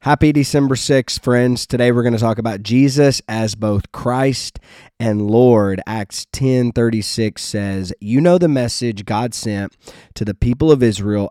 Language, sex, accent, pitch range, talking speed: English, male, American, 105-125 Hz, 160 wpm